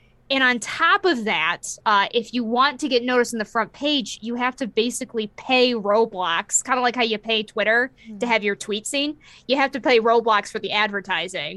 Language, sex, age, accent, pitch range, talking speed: English, female, 20-39, American, 205-270 Hz, 220 wpm